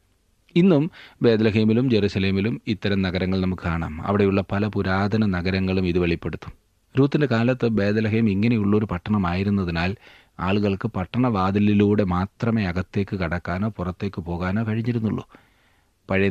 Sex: male